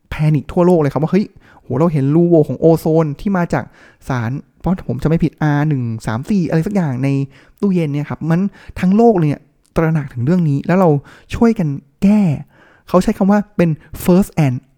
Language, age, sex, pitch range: Thai, 20-39, male, 135-170 Hz